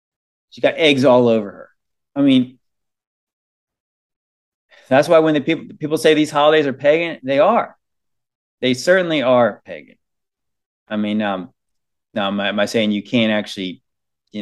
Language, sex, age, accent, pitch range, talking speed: English, male, 30-49, American, 115-175 Hz, 160 wpm